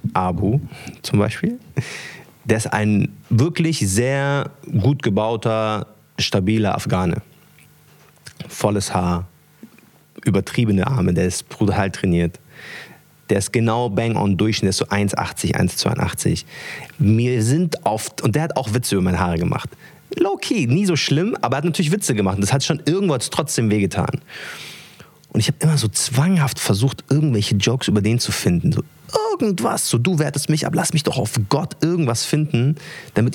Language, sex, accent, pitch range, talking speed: German, male, German, 105-145 Hz, 155 wpm